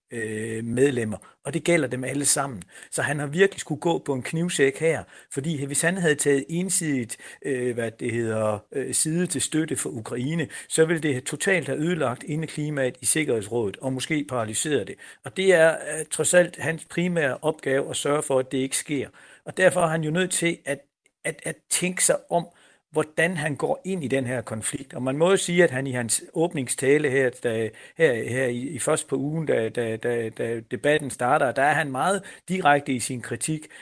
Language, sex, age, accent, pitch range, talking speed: Danish, male, 60-79, native, 130-165 Hz, 200 wpm